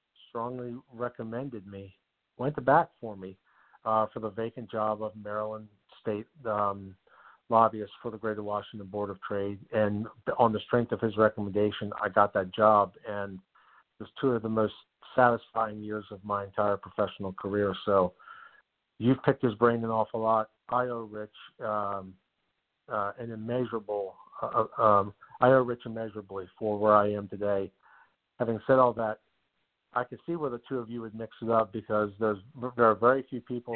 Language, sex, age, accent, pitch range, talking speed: English, male, 50-69, American, 105-120 Hz, 175 wpm